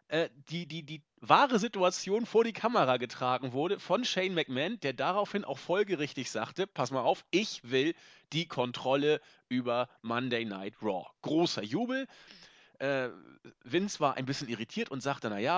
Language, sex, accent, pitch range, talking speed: German, male, German, 130-190 Hz, 150 wpm